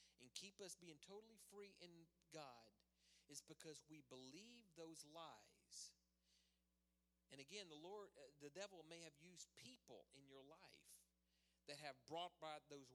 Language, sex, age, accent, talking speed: English, male, 40-59, American, 155 wpm